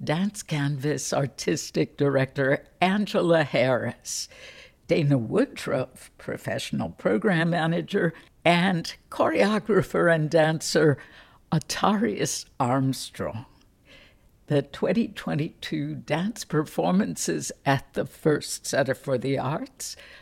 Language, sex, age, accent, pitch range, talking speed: English, female, 60-79, American, 135-175 Hz, 85 wpm